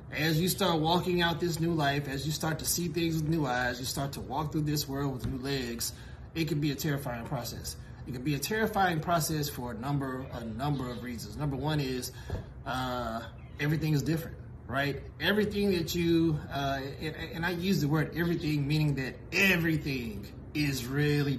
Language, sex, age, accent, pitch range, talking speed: English, male, 30-49, American, 125-160 Hz, 195 wpm